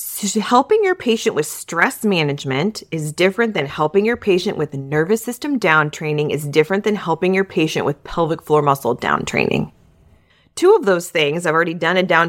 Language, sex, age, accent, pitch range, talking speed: English, female, 30-49, American, 150-205 Hz, 185 wpm